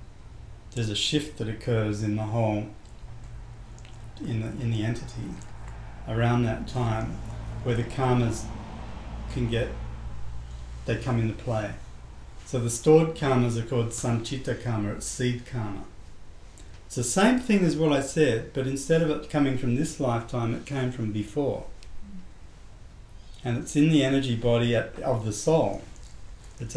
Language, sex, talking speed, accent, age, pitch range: English, male, 150 wpm, Australian, 40-59, 100-125 Hz